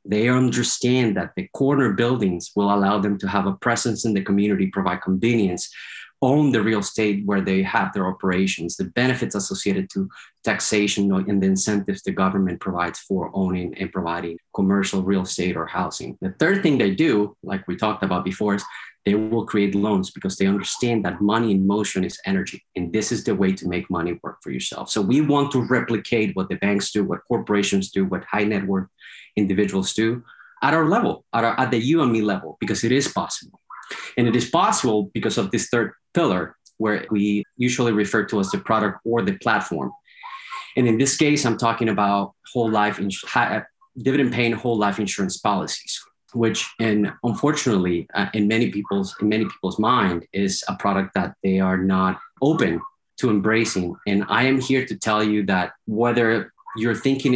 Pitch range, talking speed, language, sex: 95-115 Hz, 185 wpm, English, male